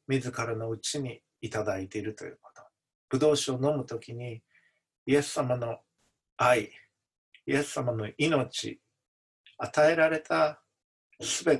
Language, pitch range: Japanese, 110-145 Hz